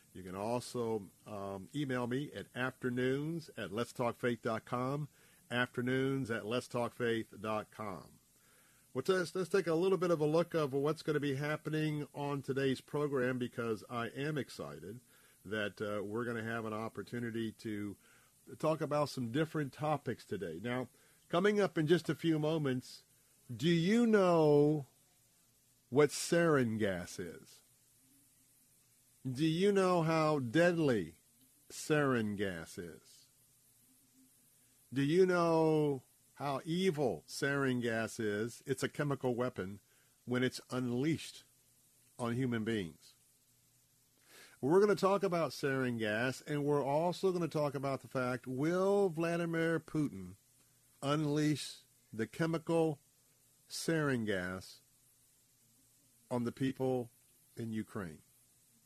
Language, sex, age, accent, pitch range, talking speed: English, male, 50-69, American, 120-150 Hz, 120 wpm